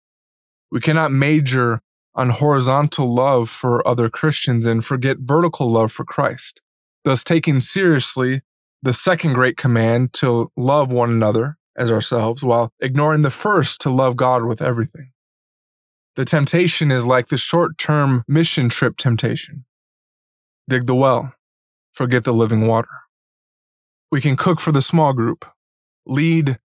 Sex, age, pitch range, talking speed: male, 20-39, 125-150 Hz, 135 wpm